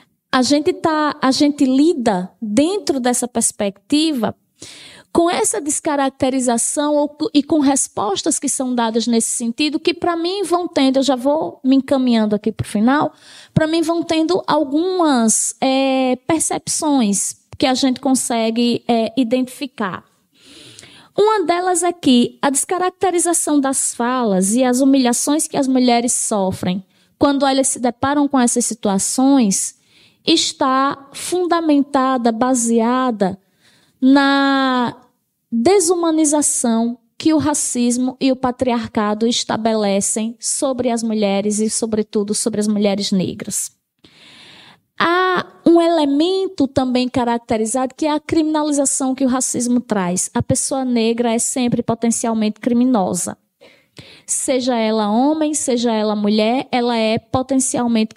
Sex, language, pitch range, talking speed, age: female, Portuguese, 230-295 Hz, 120 wpm, 20-39